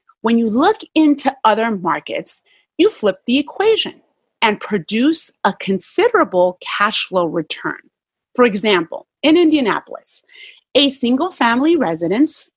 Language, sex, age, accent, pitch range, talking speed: English, female, 30-49, American, 195-300 Hz, 120 wpm